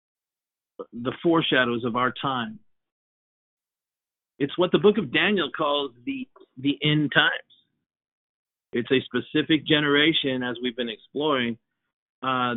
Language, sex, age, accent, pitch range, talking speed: English, male, 50-69, American, 115-140 Hz, 120 wpm